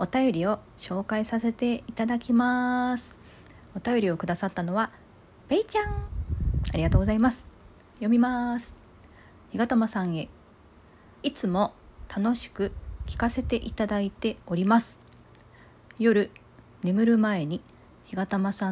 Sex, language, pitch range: female, Japanese, 165-220 Hz